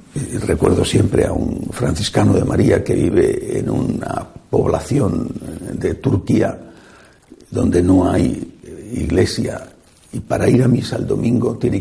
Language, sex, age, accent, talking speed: Spanish, male, 60-79, Spanish, 130 wpm